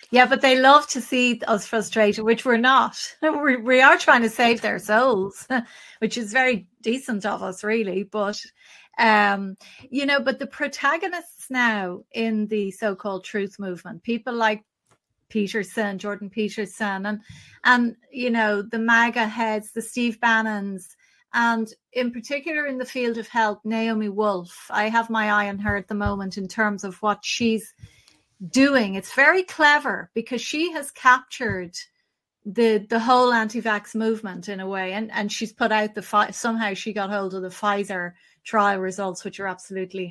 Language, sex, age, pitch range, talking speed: English, female, 30-49, 200-240 Hz, 170 wpm